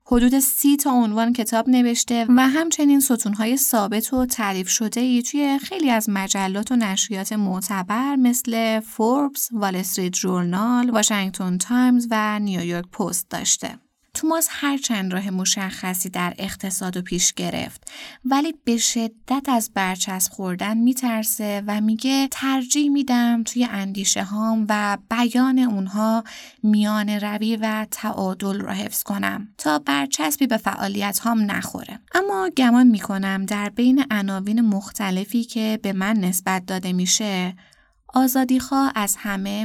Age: 20-39